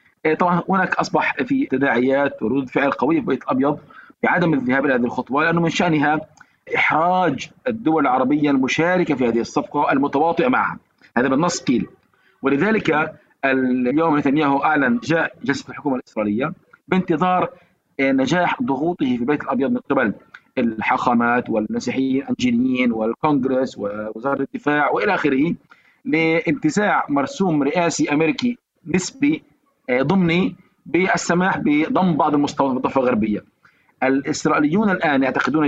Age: 40-59